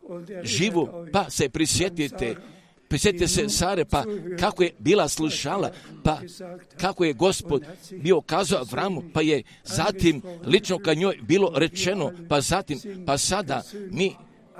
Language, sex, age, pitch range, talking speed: Croatian, male, 50-69, 155-195 Hz, 130 wpm